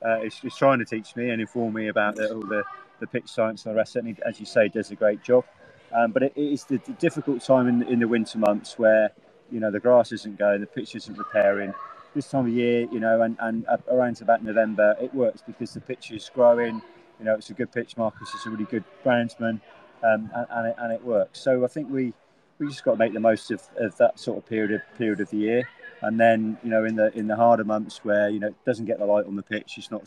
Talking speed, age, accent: 265 wpm, 30-49, British